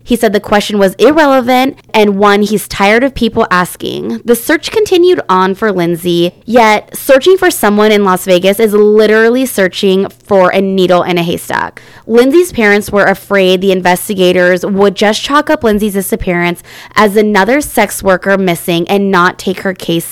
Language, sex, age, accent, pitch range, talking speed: English, female, 20-39, American, 185-240 Hz, 170 wpm